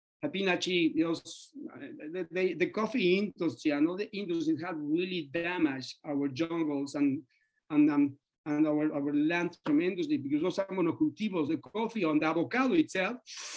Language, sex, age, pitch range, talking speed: English, male, 60-79, 155-225 Hz, 135 wpm